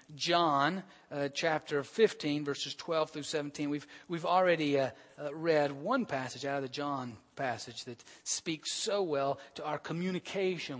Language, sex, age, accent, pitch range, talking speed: English, male, 40-59, American, 130-170 Hz, 160 wpm